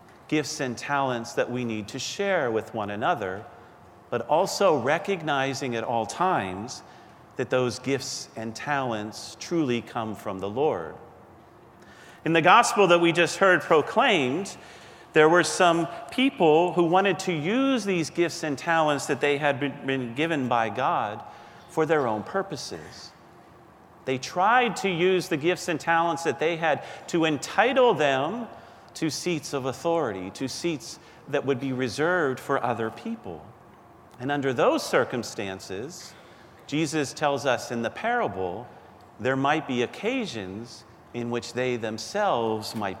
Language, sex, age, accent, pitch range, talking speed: English, male, 40-59, American, 115-165 Hz, 145 wpm